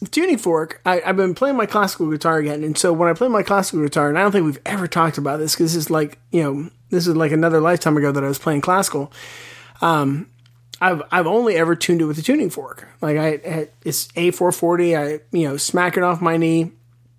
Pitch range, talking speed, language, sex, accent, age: 145-175 Hz, 235 wpm, English, male, American, 30-49